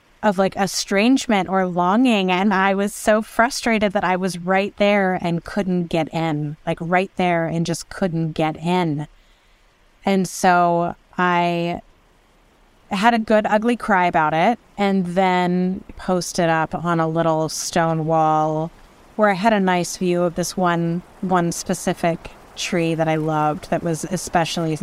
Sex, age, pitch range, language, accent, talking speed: female, 20-39, 160-195 Hz, English, American, 155 wpm